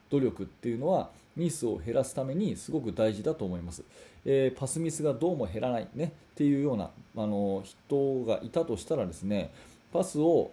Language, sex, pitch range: Japanese, male, 110-150 Hz